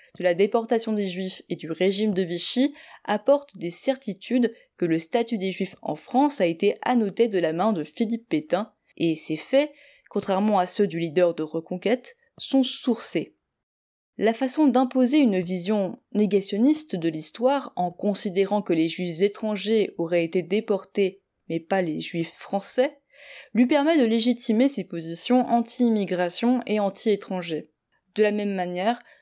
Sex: female